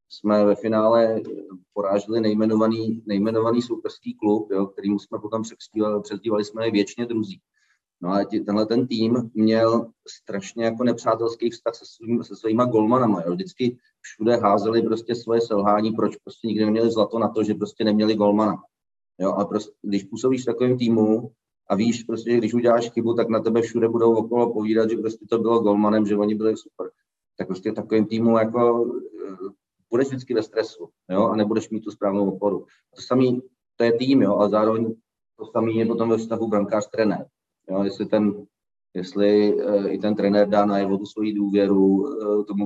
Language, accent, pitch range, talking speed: Czech, native, 100-115 Hz, 170 wpm